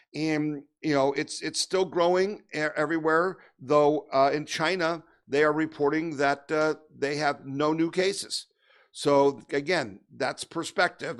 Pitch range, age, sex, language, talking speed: 135-160 Hz, 50-69, male, English, 140 wpm